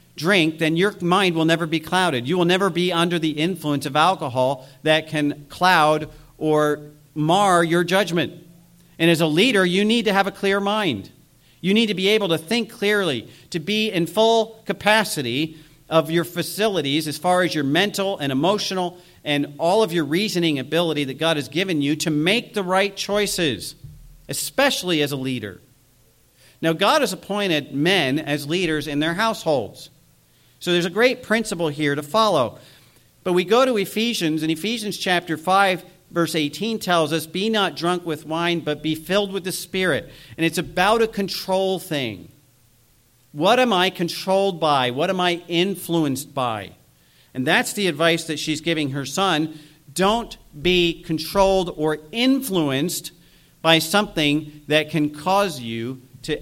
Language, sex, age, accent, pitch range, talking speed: English, male, 50-69, American, 150-190 Hz, 165 wpm